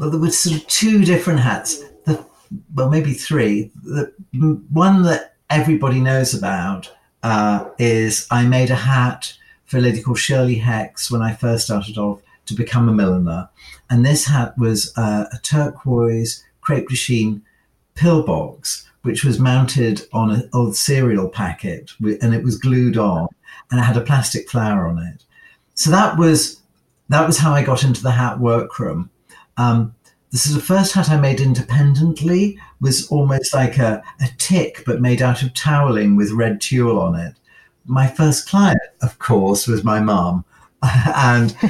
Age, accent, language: 50-69, British, English